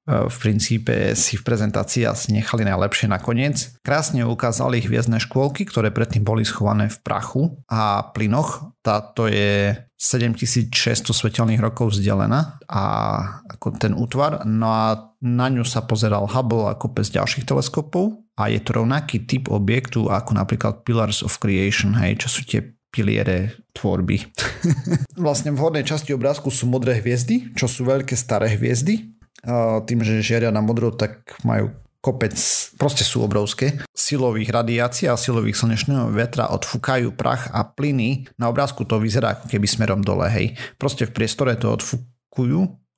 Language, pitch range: Slovak, 110-130 Hz